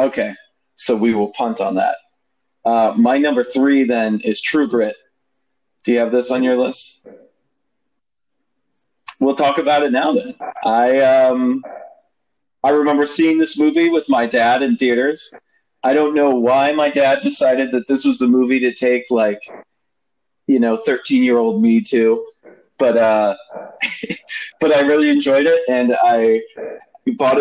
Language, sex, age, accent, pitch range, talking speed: English, male, 30-49, American, 115-155 Hz, 155 wpm